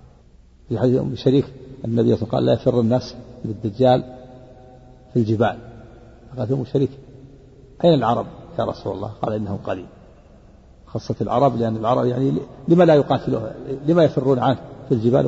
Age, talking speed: 50-69, 140 wpm